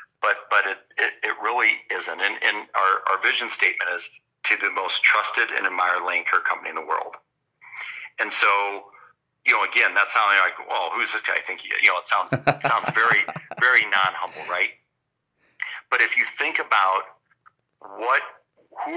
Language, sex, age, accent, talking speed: English, male, 50-69, American, 185 wpm